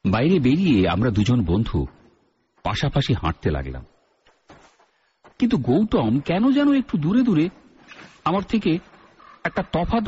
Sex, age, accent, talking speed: male, 50-69, native, 115 wpm